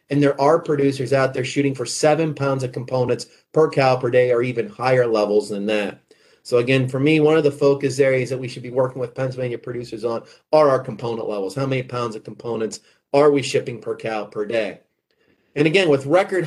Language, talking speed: English, 220 wpm